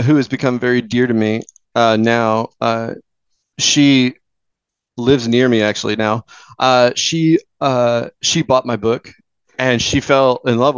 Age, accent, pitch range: 30-49, American, 110-135 Hz